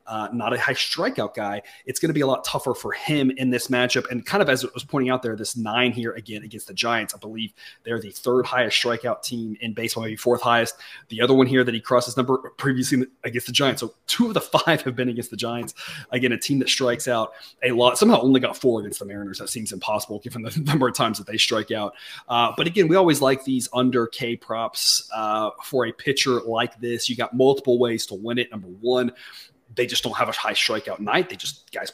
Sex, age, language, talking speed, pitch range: male, 30-49, English, 250 wpm, 115-130 Hz